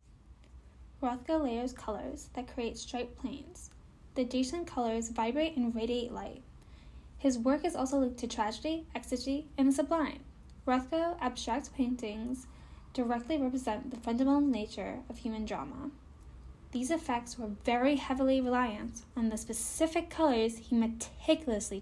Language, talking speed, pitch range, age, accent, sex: English, 130 wpm, 220-270 Hz, 10-29, American, female